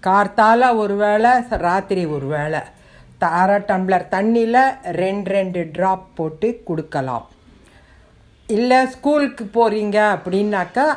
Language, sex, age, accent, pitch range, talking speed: Tamil, female, 60-79, native, 170-230 Hz, 105 wpm